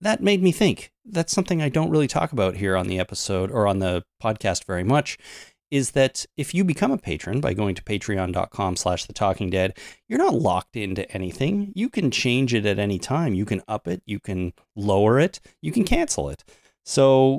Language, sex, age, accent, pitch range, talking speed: English, male, 30-49, American, 95-125 Hz, 210 wpm